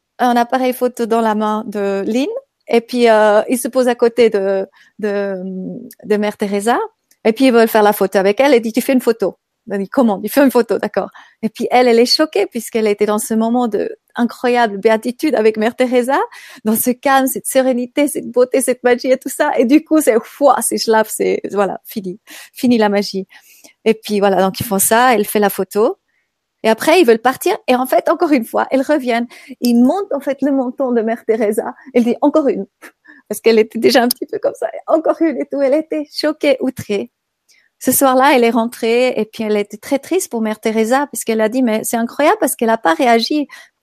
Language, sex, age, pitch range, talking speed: French, female, 30-49, 220-275 Hz, 235 wpm